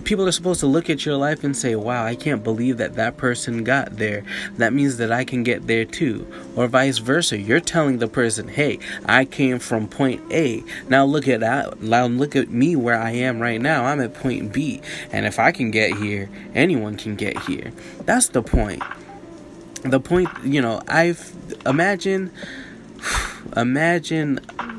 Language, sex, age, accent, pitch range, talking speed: English, male, 20-39, American, 115-145 Hz, 185 wpm